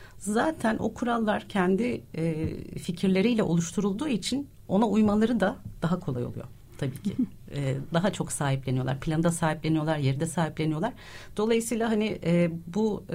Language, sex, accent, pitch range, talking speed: Turkish, female, native, 145-205 Hz, 115 wpm